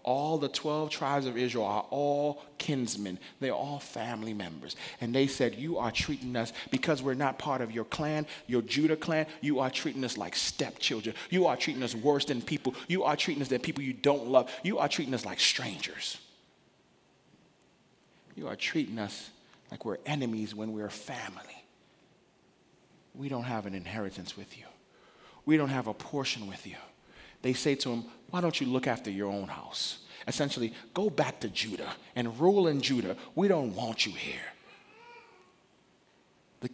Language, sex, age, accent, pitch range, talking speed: English, male, 30-49, American, 115-150 Hz, 180 wpm